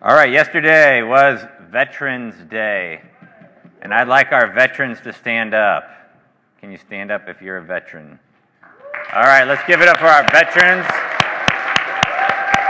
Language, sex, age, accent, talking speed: English, male, 30-49, American, 145 wpm